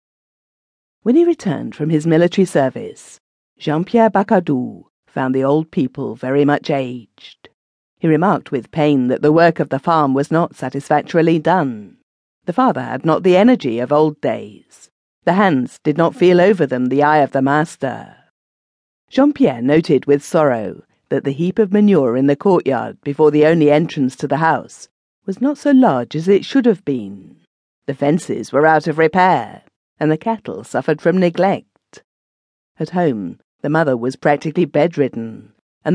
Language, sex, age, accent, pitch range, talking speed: English, female, 50-69, British, 135-175 Hz, 165 wpm